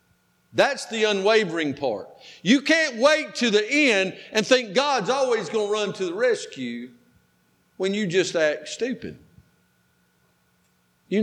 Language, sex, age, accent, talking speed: English, male, 50-69, American, 140 wpm